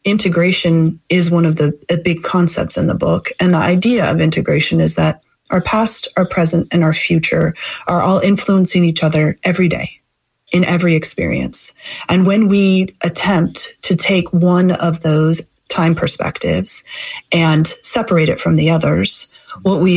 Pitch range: 165-195 Hz